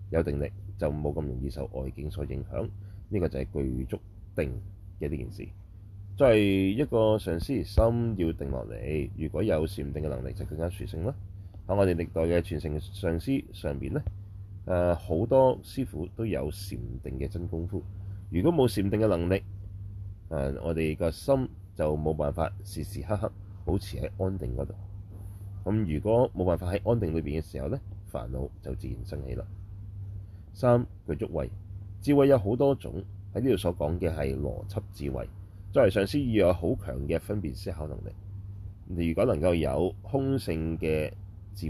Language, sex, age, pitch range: Chinese, male, 30-49, 80-100 Hz